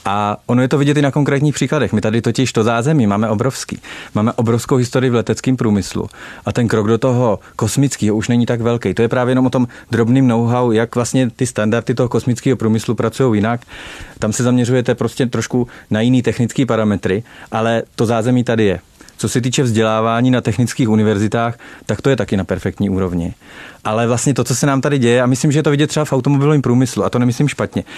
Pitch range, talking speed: 115-145 Hz, 210 wpm